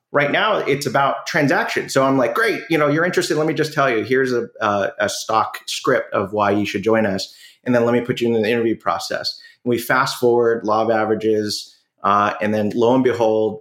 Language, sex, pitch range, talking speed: English, male, 110-140 Hz, 240 wpm